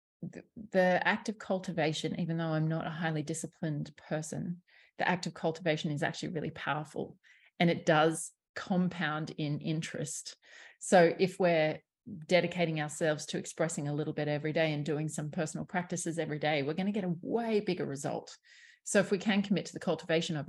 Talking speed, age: 180 wpm, 30-49